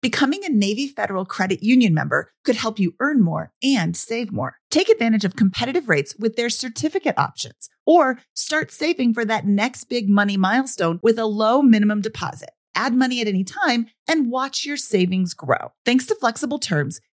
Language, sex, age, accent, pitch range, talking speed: English, female, 40-59, American, 195-280 Hz, 180 wpm